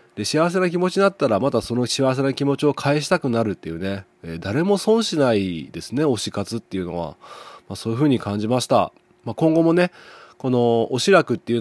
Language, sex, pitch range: Japanese, male, 110-145 Hz